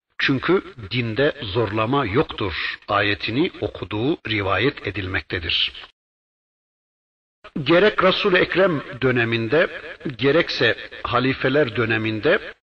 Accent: native